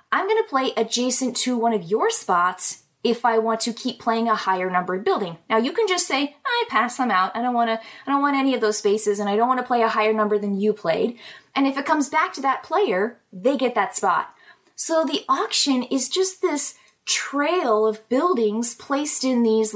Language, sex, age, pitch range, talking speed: English, female, 20-39, 205-275 Hz, 230 wpm